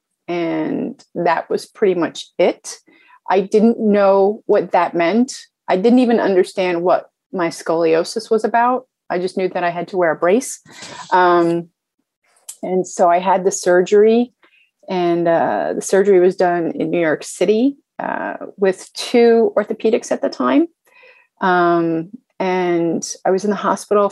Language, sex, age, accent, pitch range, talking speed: English, female, 30-49, American, 180-235 Hz, 155 wpm